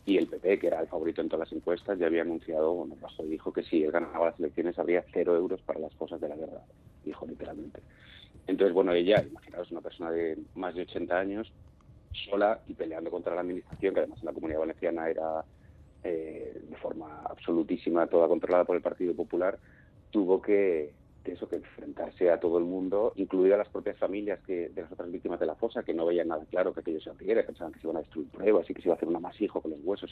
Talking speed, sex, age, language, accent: 235 wpm, male, 30-49, Spanish, Spanish